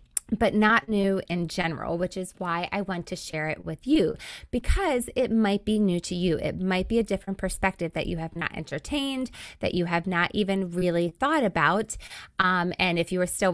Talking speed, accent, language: 210 wpm, American, English